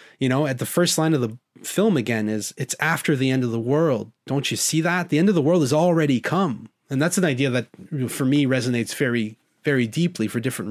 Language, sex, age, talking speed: English, male, 30-49, 240 wpm